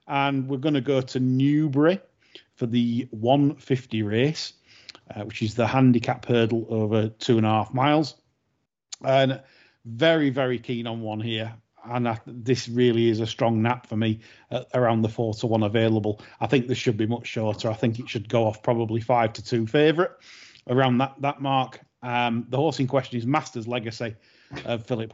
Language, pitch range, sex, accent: English, 115-135 Hz, male, British